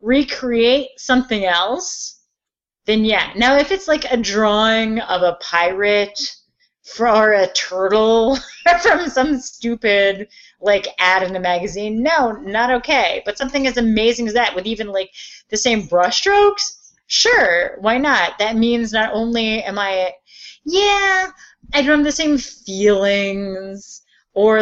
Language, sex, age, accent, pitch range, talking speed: English, female, 30-49, American, 190-260 Hz, 140 wpm